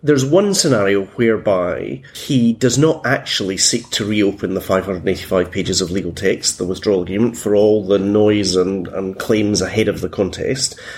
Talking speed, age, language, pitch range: 170 wpm, 30-49, English, 105-130 Hz